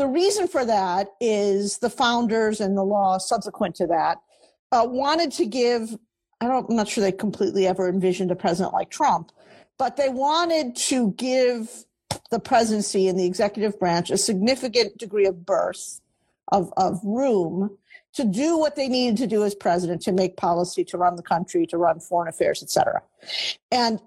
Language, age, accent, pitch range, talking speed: English, 50-69, American, 190-250 Hz, 175 wpm